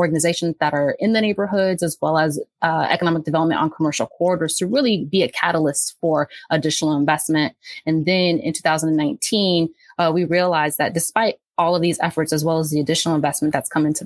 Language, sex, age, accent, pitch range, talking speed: English, female, 20-39, American, 155-175 Hz, 190 wpm